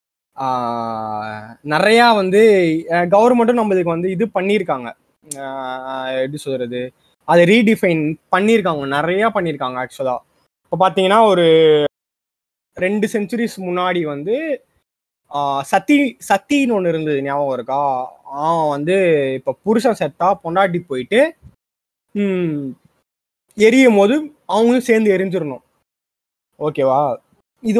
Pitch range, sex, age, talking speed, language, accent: 150-225 Hz, male, 20-39, 90 wpm, Tamil, native